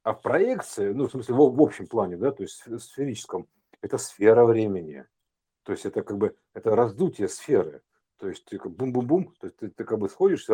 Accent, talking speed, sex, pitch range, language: native, 220 wpm, male, 120-170 Hz, Russian